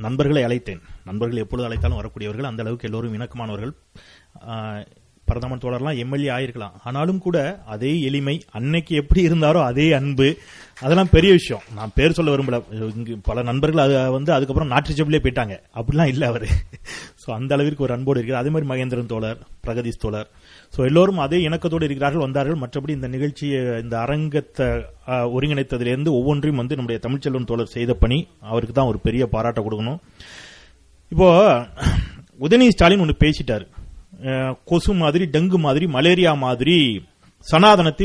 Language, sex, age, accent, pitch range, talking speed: Tamil, male, 30-49, native, 115-165 Hz, 85 wpm